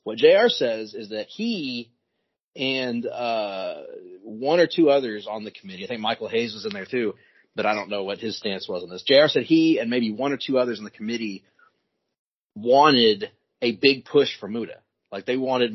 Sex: male